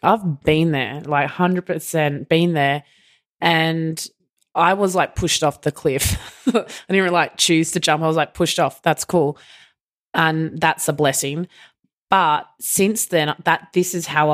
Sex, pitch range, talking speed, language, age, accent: female, 150-175 Hz, 165 wpm, English, 20-39, Australian